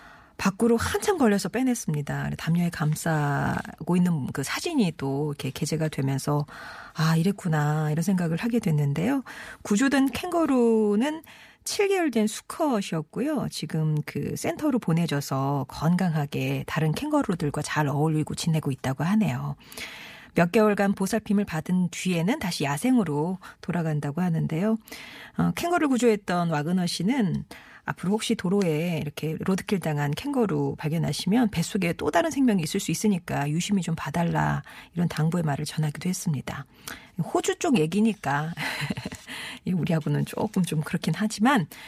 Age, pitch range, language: 40-59, 155-220 Hz, Korean